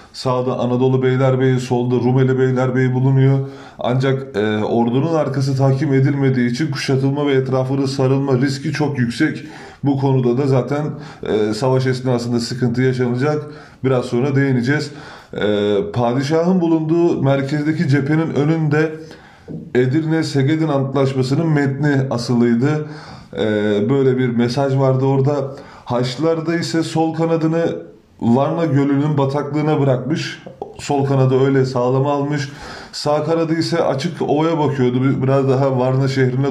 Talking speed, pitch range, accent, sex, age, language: 120 wpm, 130-150 Hz, native, male, 30-49, Turkish